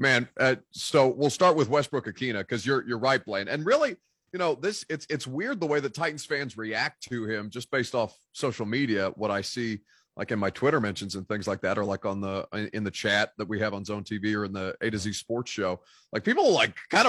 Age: 30-49